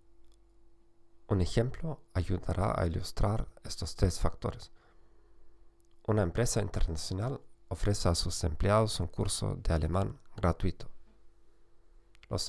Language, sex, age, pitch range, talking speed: Spanish, male, 40-59, 85-110 Hz, 100 wpm